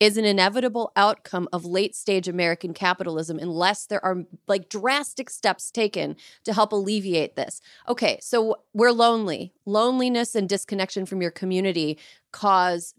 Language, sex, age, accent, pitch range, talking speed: English, female, 30-49, American, 175-245 Hz, 140 wpm